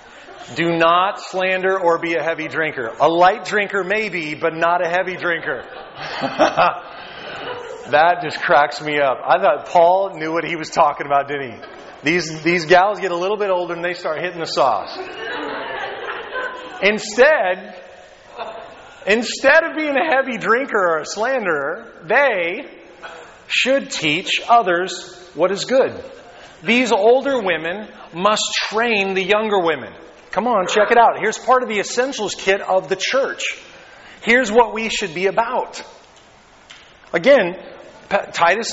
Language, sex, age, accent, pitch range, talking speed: English, male, 30-49, American, 170-225 Hz, 145 wpm